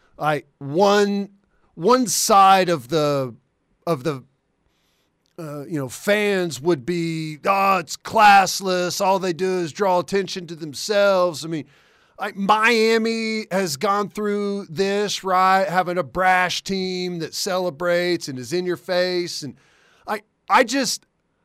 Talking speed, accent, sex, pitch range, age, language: 135 wpm, American, male, 160-195 Hz, 40-59, English